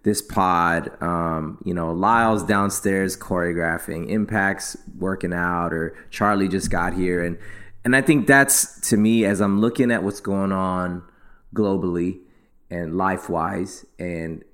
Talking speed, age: 140 wpm, 20-39